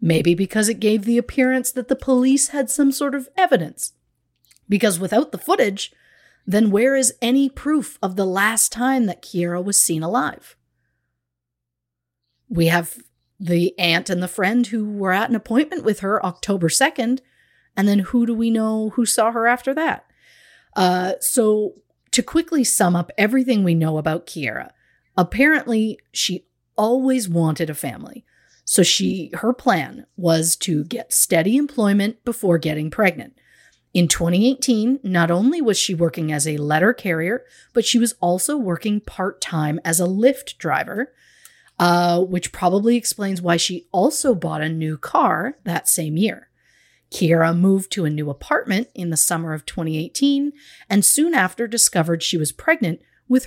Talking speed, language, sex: 160 wpm, English, female